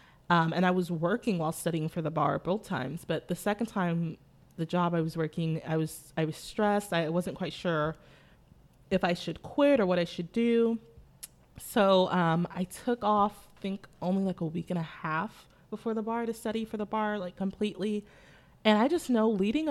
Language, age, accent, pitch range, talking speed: English, 20-39, American, 165-210 Hz, 205 wpm